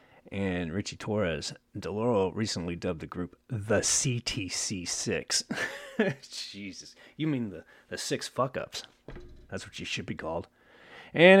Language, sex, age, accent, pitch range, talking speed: English, male, 30-49, American, 90-135 Hz, 125 wpm